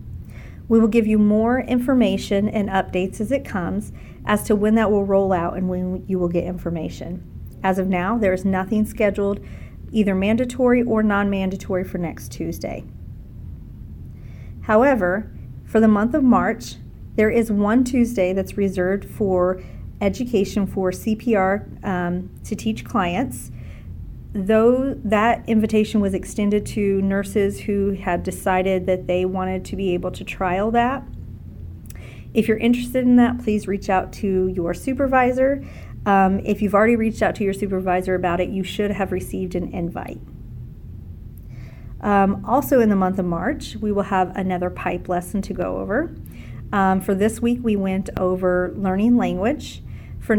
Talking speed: 155 wpm